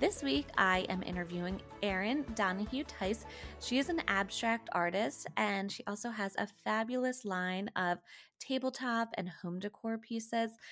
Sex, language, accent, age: female, English, American, 20-39